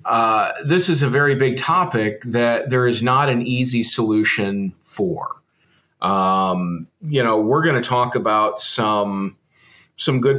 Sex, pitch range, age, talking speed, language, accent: male, 110-135 Hz, 40-59, 150 wpm, English, American